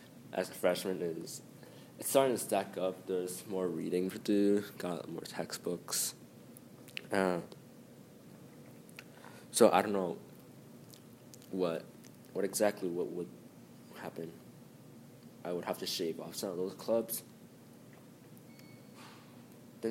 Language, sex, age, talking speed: English, male, 20-39, 115 wpm